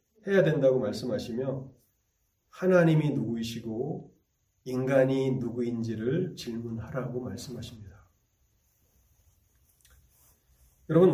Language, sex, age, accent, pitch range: Korean, male, 30-49, native, 115-155 Hz